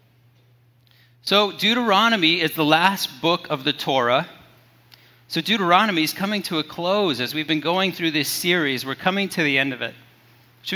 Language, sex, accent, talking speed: English, male, American, 175 wpm